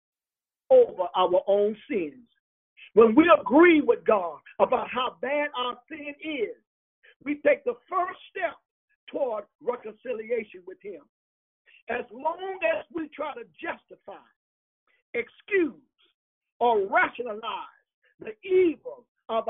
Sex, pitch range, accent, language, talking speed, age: male, 245-385 Hz, American, English, 115 wpm, 50-69